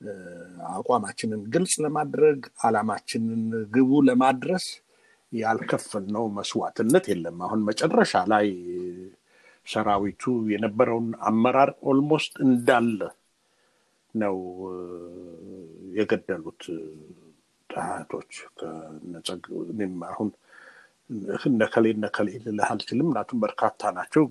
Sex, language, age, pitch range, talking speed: male, Amharic, 60-79, 105-150 Hz, 70 wpm